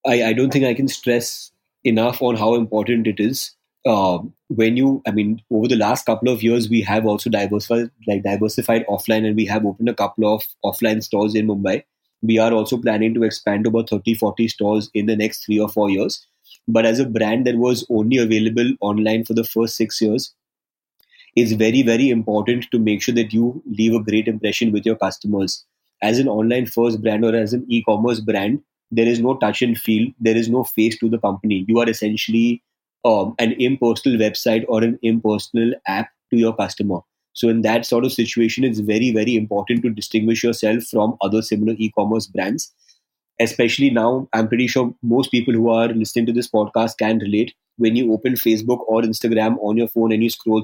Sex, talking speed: male, 205 wpm